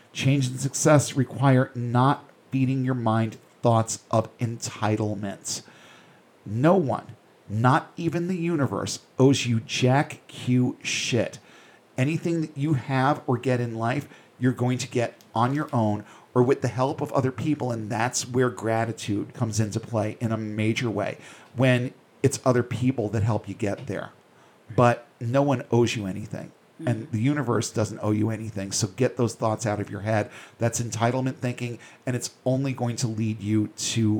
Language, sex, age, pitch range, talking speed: English, male, 40-59, 110-130 Hz, 165 wpm